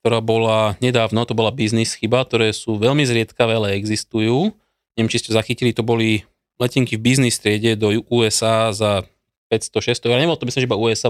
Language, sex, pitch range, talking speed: Slovak, male, 110-125 Hz, 185 wpm